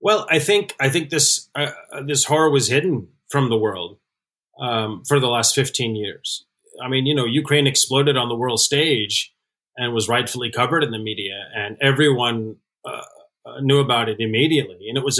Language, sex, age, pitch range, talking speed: English, male, 30-49, 120-150 Hz, 185 wpm